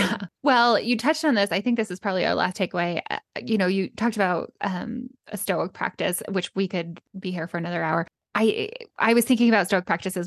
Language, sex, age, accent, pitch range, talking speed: English, female, 10-29, American, 180-215 Hz, 220 wpm